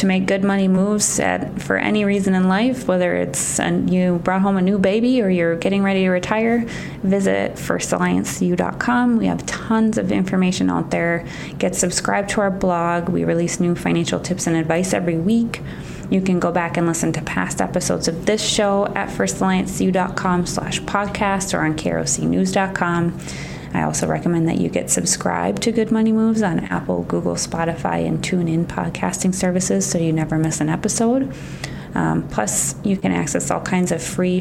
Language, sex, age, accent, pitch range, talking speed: English, female, 20-39, American, 165-200 Hz, 180 wpm